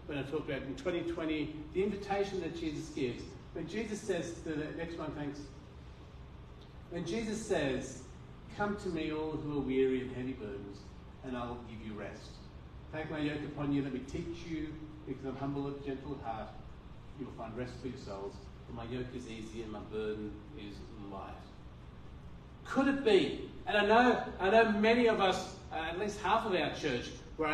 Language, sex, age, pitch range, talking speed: English, male, 40-59, 125-195 Hz, 185 wpm